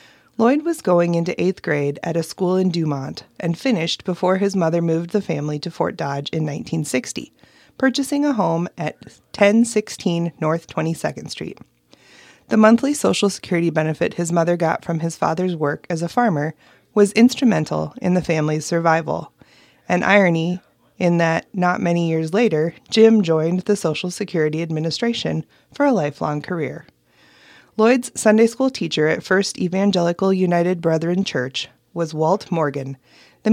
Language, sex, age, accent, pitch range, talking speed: English, female, 20-39, American, 165-220 Hz, 150 wpm